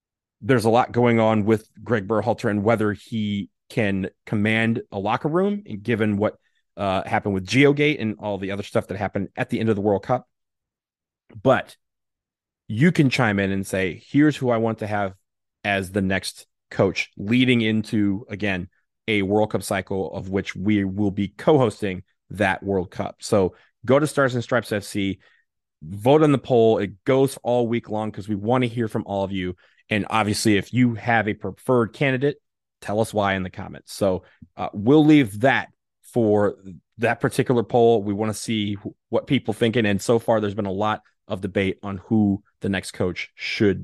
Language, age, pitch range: English, 30-49, 100-125 Hz